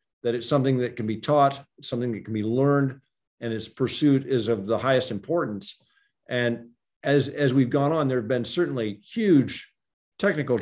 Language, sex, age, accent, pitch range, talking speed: English, male, 50-69, American, 115-145 Hz, 180 wpm